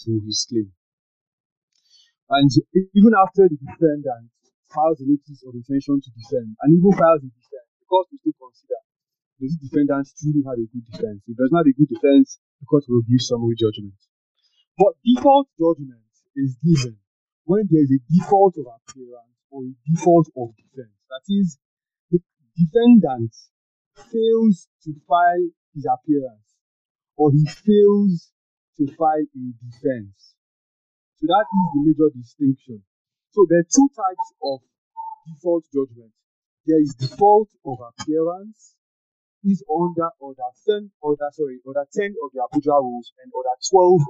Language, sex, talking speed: English, male, 150 wpm